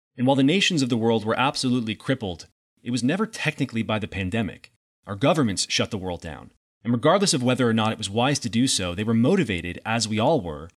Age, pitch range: 30-49, 115-140 Hz